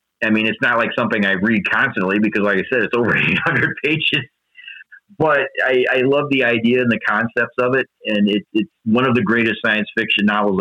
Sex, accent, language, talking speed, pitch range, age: male, American, English, 215 wpm, 95-115 Hz, 40-59